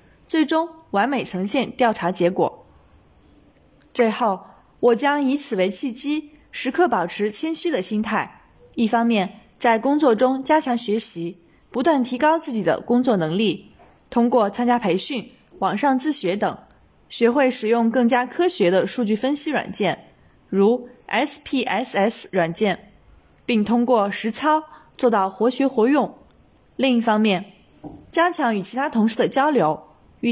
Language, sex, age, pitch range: Chinese, female, 20-39, 205-275 Hz